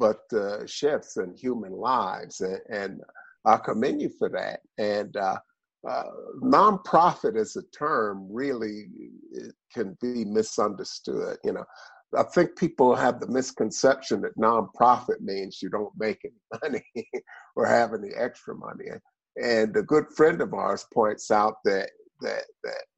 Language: English